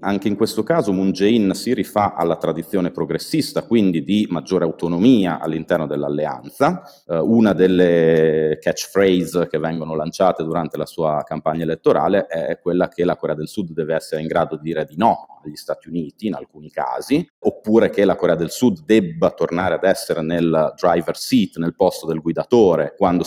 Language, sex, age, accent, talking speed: Italian, male, 30-49, native, 175 wpm